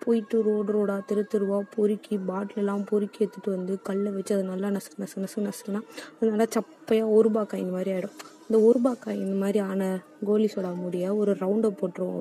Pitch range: 205-250 Hz